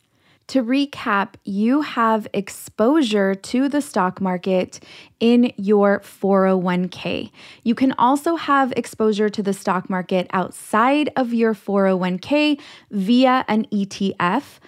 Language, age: English, 20-39